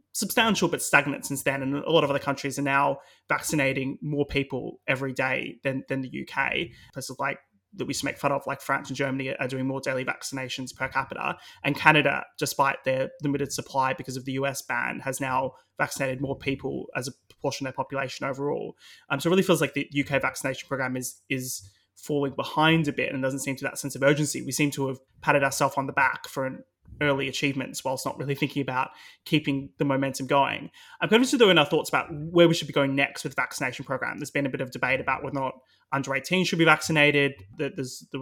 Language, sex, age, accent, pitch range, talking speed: English, male, 20-39, Australian, 135-145 Hz, 230 wpm